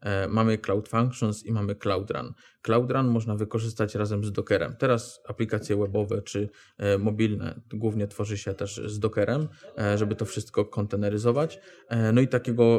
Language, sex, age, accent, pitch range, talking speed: Polish, male, 20-39, native, 105-115 Hz, 165 wpm